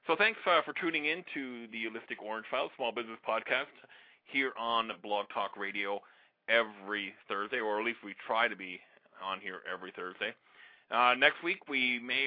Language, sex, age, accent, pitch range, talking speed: English, male, 30-49, American, 100-115 Hz, 180 wpm